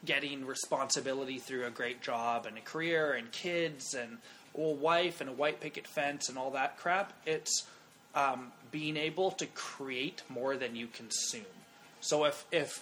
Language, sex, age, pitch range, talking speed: English, male, 20-39, 130-170 Hz, 170 wpm